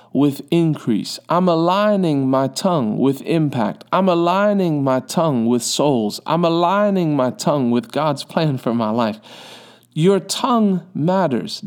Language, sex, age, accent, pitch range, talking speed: English, male, 40-59, American, 125-175 Hz, 140 wpm